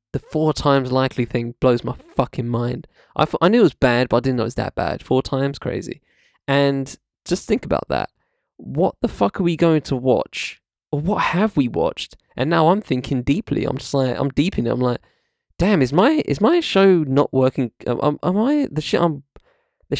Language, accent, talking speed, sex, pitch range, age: English, British, 220 wpm, male, 120-150 Hz, 10-29